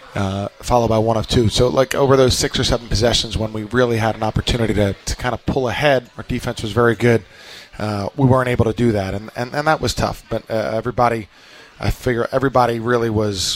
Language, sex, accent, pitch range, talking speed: English, male, American, 110-125 Hz, 230 wpm